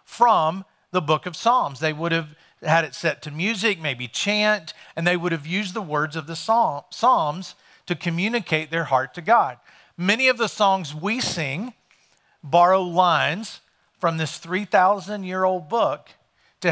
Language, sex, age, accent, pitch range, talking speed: English, male, 40-59, American, 145-185 Hz, 165 wpm